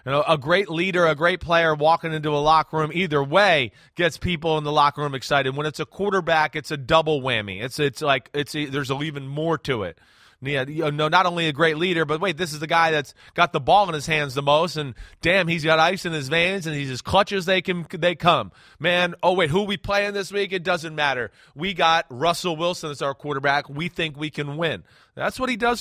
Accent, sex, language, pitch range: American, male, English, 150-195 Hz